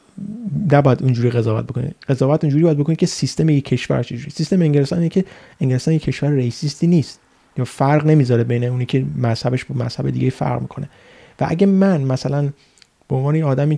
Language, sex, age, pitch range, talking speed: Persian, male, 30-49, 125-150 Hz, 170 wpm